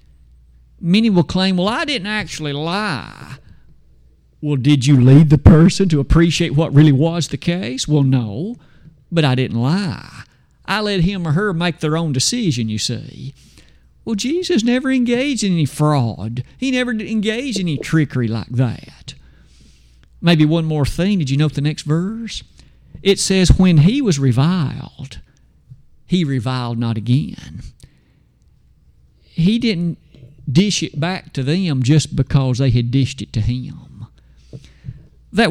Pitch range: 130-185 Hz